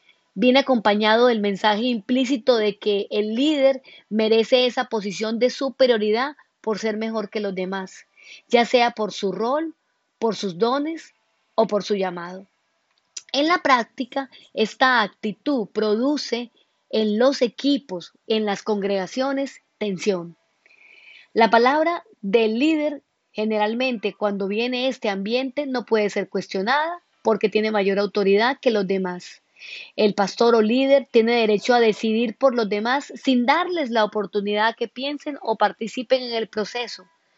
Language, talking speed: Spanish, 140 wpm